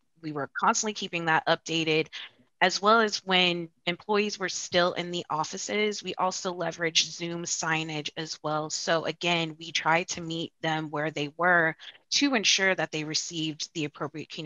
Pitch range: 160-180 Hz